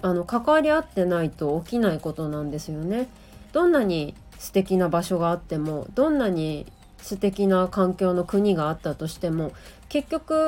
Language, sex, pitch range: Japanese, female, 160-220 Hz